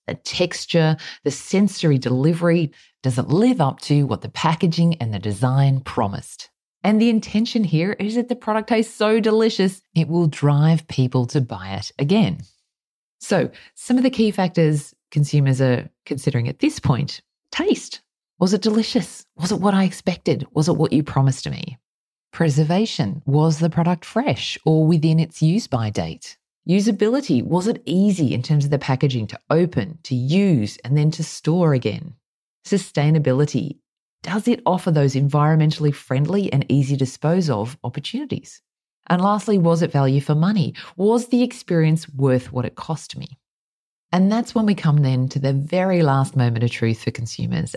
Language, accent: English, Australian